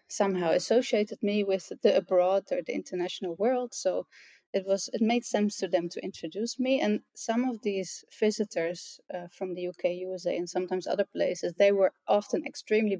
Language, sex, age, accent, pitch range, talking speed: English, female, 20-39, Dutch, 185-225 Hz, 180 wpm